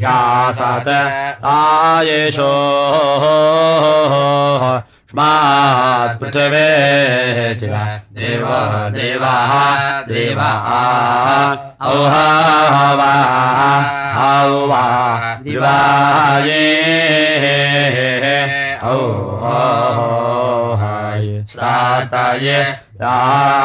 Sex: male